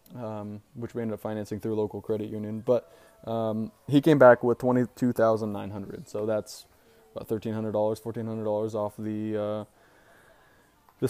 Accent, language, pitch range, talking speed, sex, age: American, English, 105-125 Hz, 140 wpm, male, 20-39